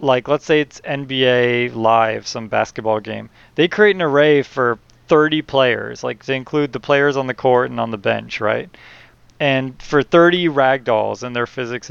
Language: English